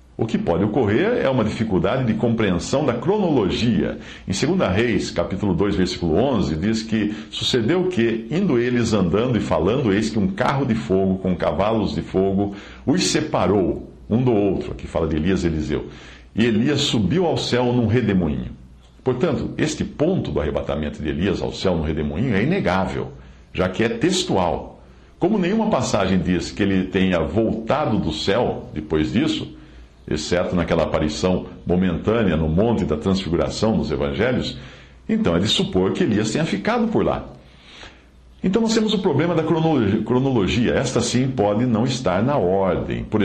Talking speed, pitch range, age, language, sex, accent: 165 wpm, 85-125 Hz, 60-79, Portuguese, male, Brazilian